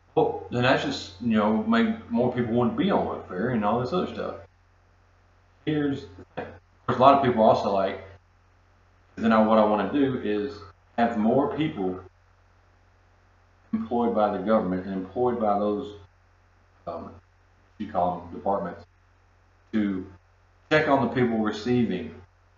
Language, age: English, 40-59